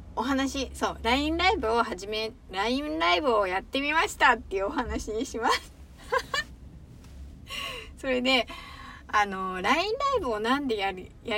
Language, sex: Japanese, female